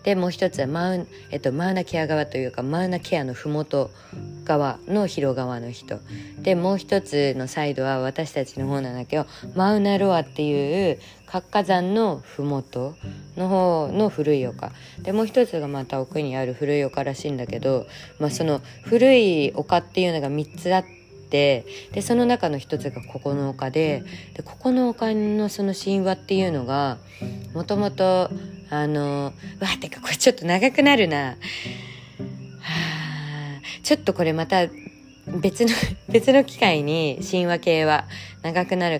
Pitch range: 135-190 Hz